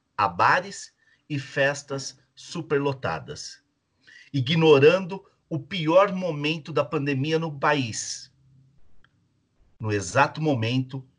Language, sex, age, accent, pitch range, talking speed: Portuguese, male, 50-69, Brazilian, 130-155 Hz, 85 wpm